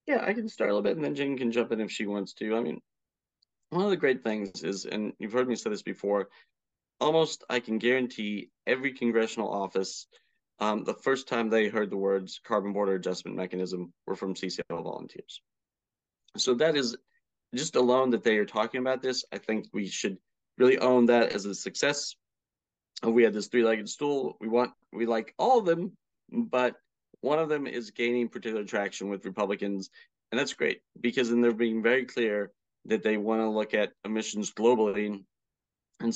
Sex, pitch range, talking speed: male, 105-120 Hz, 190 wpm